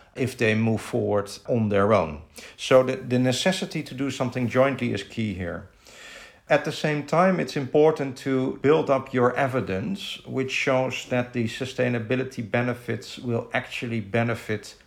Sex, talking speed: male, 155 wpm